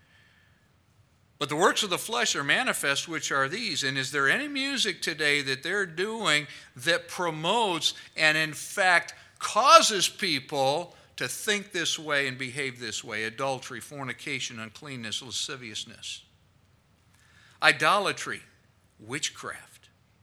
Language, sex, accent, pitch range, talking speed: English, male, American, 120-170 Hz, 120 wpm